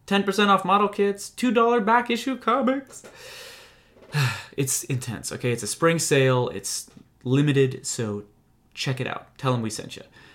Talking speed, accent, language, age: 150 wpm, American, English, 20-39